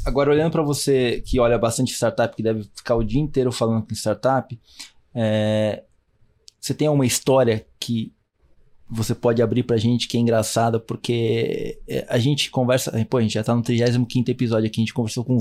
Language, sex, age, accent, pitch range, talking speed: Portuguese, male, 20-39, Brazilian, 120-160 Hz, 185 wpm